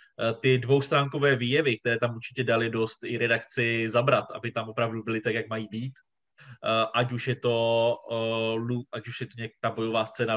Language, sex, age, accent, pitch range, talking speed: Czech, male, 20-39, native, 110-125 Hz, 150 wpm